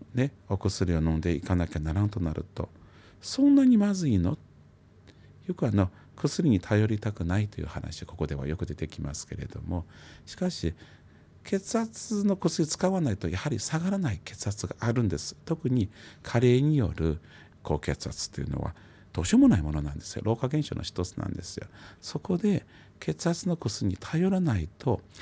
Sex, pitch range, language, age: male, 90-145 Hz, Japanese, 40-59